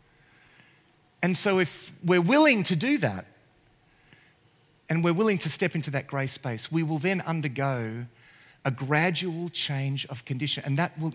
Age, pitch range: 40-59, 140-185 Hz